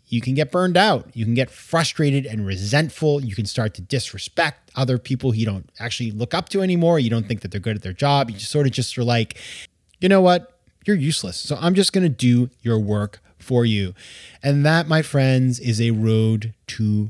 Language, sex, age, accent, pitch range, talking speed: English, male, 20-39, American, 110-145 Hz, 220 wpm